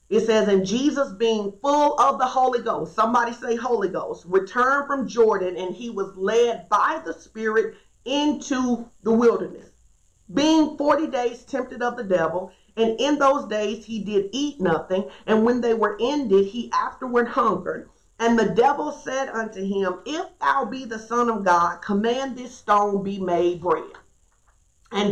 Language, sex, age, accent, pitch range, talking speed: English, female, 40-59, American, 195-250 Hz, 165 wpm